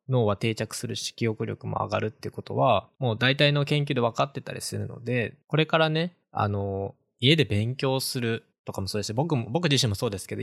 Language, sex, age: Japanese, male, 20-39